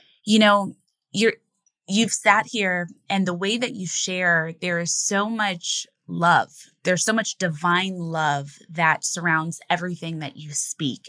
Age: 20-39